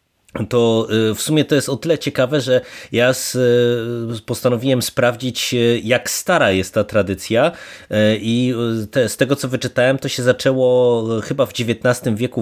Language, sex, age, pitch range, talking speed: Polish, male, 30-49, 110-130 Hz, 140 wpm